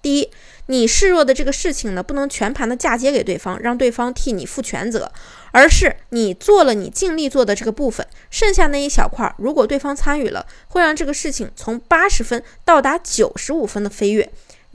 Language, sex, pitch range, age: Chinese, female, 230-300 Hz, 20-39